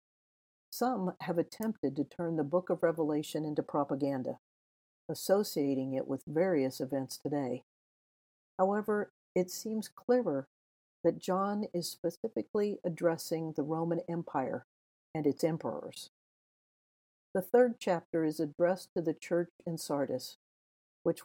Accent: American